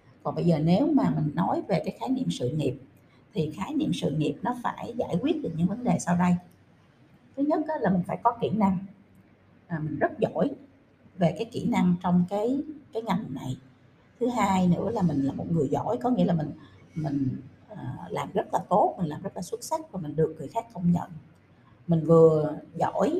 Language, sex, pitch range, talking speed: Vietnamese, female, 150-195 Hz, 215 wpm